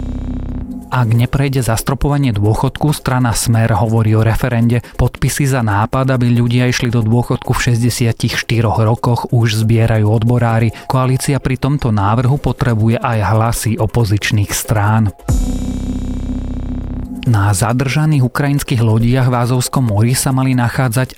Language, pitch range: Slovak, 110-130 Hz